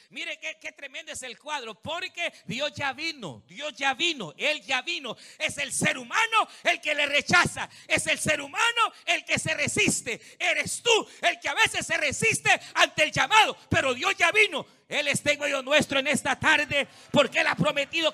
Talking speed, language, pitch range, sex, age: 200 wpm, Spanish, 265-350 Hz, male, 50-69